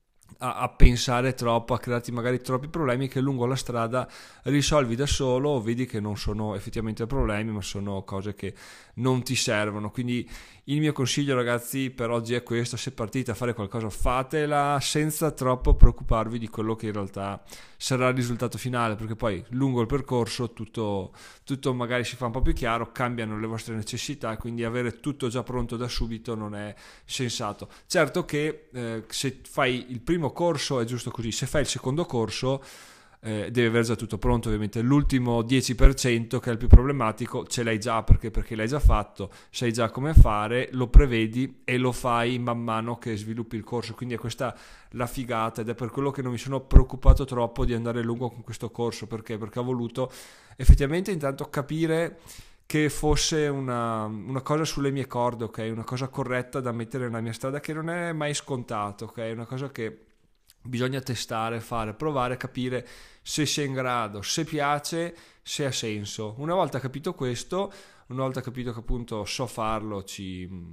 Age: 20-39